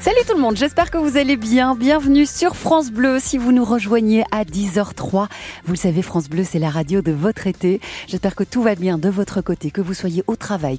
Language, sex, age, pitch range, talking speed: French, female, 40-59, 165-235 Hz, 240 wpm